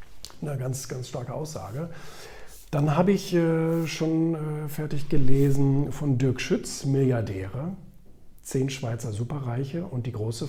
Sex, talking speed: male, 120 wpm